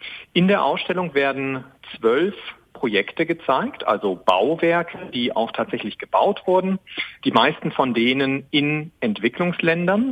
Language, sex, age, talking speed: German, male, 40-59, 120 wpm